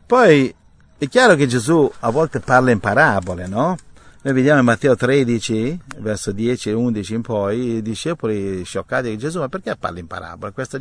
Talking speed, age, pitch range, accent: 185 wpm, 50-69, 110-150 Hz, native